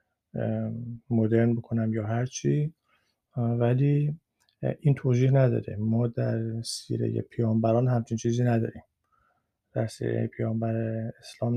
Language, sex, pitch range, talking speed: Persian, male, 115-130 Hz, 100 wpm